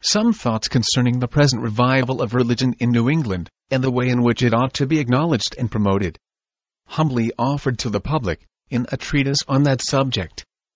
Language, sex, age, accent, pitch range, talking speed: English, male, 40-59, American, 120-140 Hz, 190 wpm